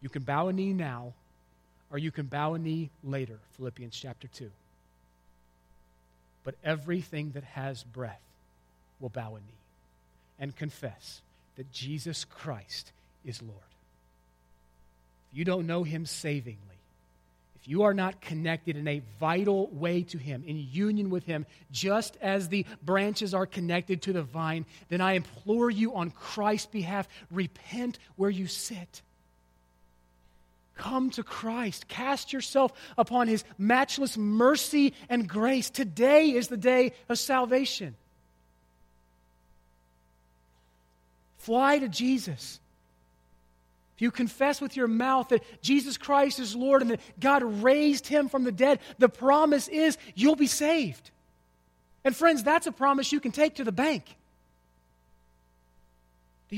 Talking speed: 140 wpm